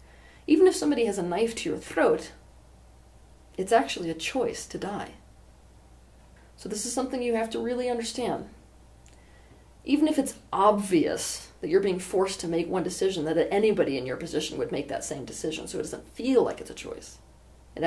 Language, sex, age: English, female, 40-59